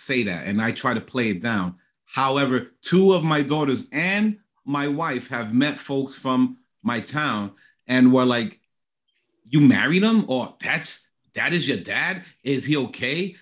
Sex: male